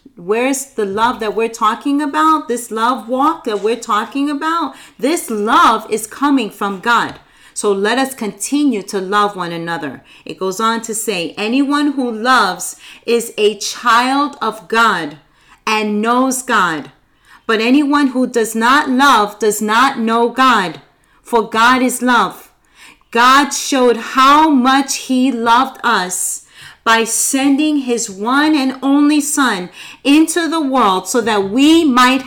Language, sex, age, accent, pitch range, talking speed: English, female, 40-59, American, 220-280 Hz, 145 wpm